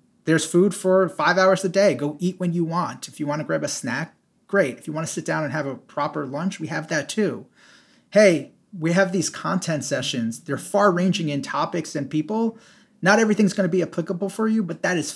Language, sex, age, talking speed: English, male, 30-49, 220 wpm